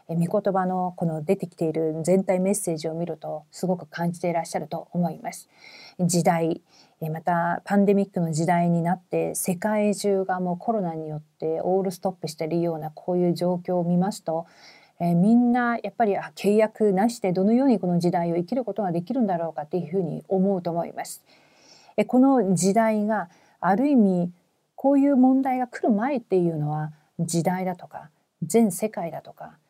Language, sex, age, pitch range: Korean, female, 40-59, 170-215 Hz